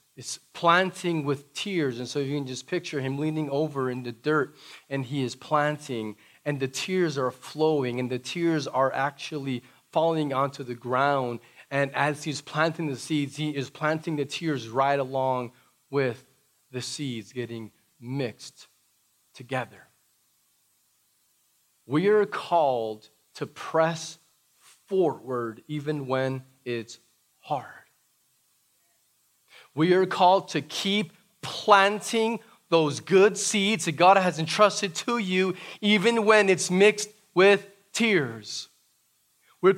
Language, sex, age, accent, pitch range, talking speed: English, male, 30-49, American, 135-215 Hz, 130 wpm